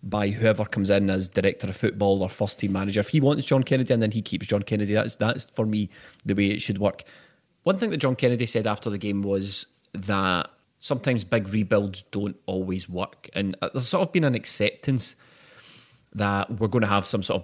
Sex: male